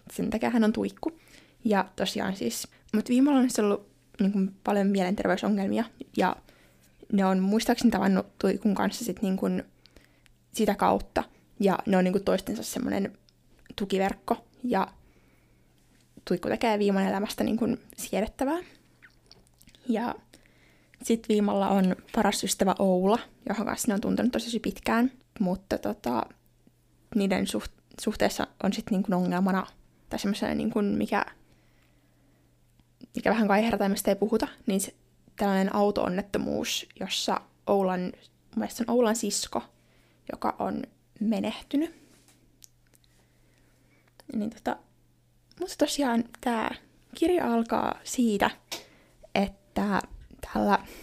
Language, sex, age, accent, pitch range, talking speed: Finnish, female, 20-39, native, 195-240 Hz, 125 wpm